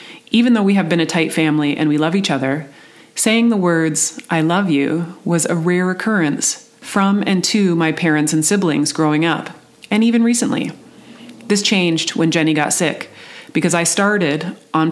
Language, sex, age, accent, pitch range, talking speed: English, female, 30-49, American, 155-185 Hz, 180 wpm